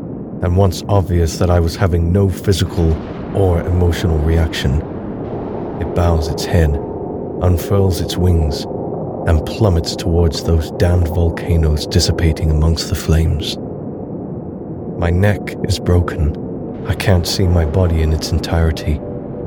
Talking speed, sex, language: 125 wpm, male, English